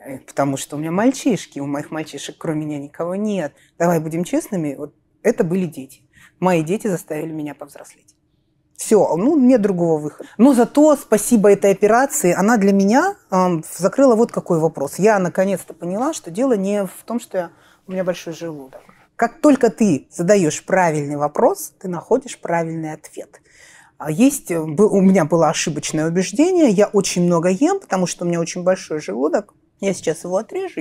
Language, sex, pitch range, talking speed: Russian, female, 160-220 Hz, 165 wpm